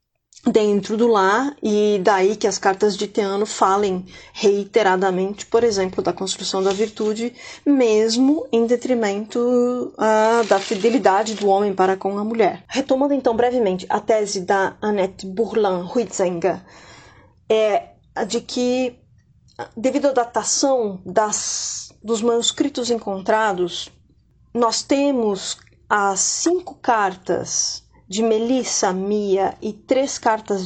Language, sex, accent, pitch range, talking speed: Portuguese, female, Brazilian, 200-255 Hz, 115 wpm